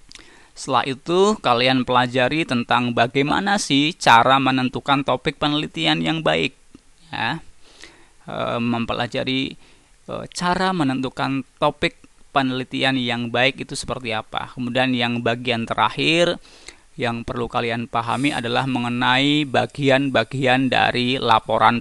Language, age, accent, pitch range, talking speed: Indonesian, 20-39, native, 120-140 Hz, 100 wpm